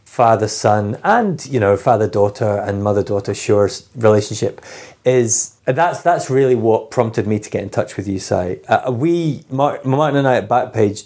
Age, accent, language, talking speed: 30-49, British, English, 180 wpm